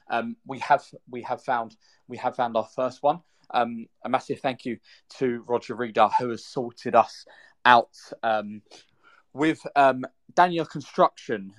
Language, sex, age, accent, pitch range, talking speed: English, male, 20-39, British, 105-125 Hz, 155 wpm